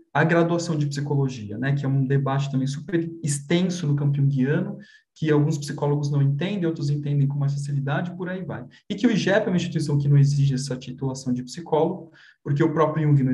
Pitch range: 140-180 Hz